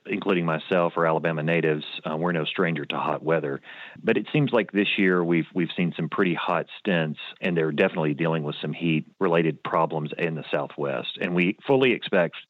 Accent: American